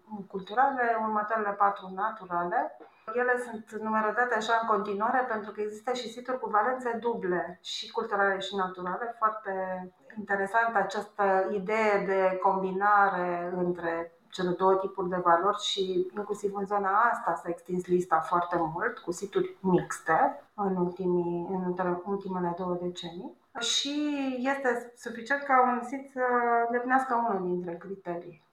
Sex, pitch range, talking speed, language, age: female, 185-230 Hz, 135 wpm, Romanian, 30-49